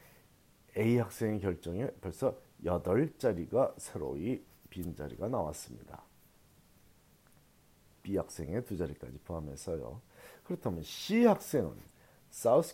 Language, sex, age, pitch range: Korean, male, 40-59, 95-140 Hz